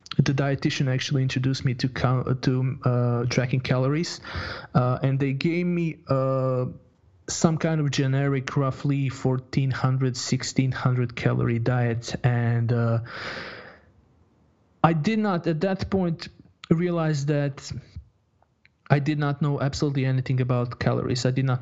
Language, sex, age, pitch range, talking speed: English, male, 20-39, 125-145 Hz, 130 wpm